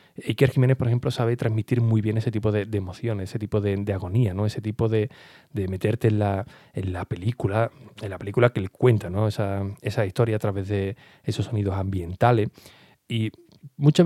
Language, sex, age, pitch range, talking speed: Spanish, male, 30-49, 100-125 Hz, 200 wpm